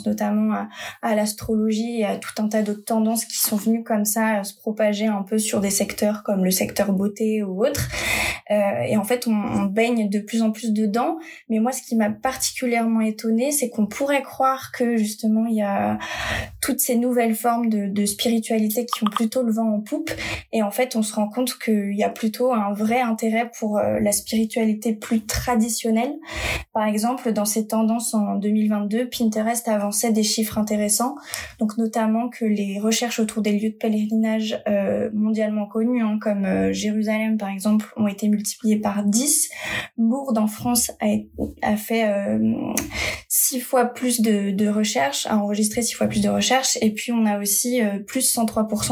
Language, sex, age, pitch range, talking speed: French, female, 20-39, 210-235 Hz, 190 wpm